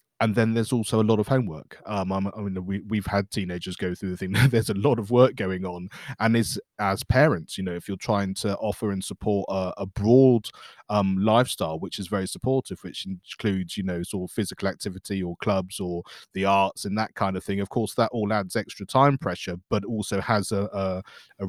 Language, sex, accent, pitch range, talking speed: English, male, British, 95-115 Hz, 225 wpm